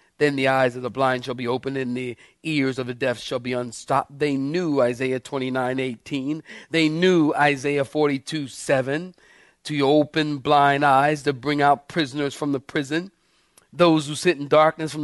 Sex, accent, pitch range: male, American, 135-195 Hz